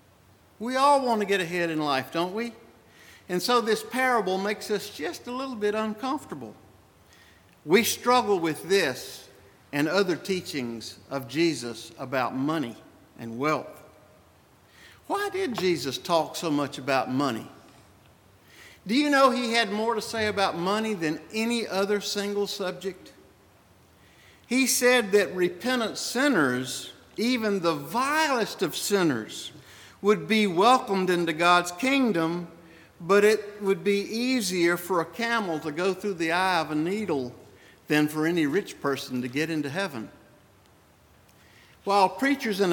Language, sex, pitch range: English, male, 140-210 Hz